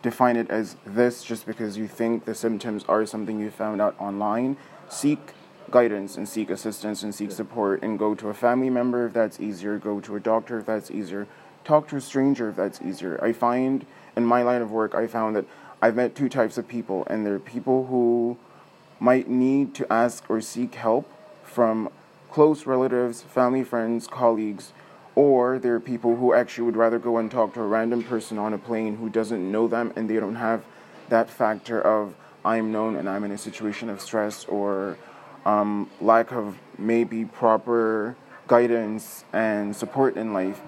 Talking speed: 190 wpm